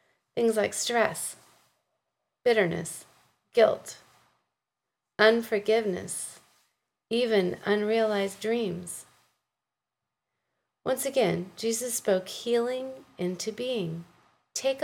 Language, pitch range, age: English, 180-260 Hz, 30-49